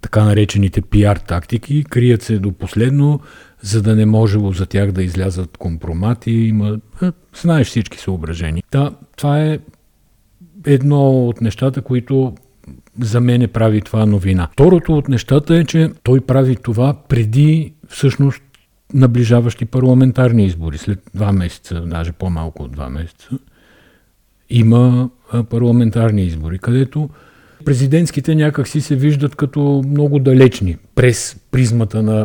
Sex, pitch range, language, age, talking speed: male, 95-135 Hz, Bulgarian, 50-69, 125 wpm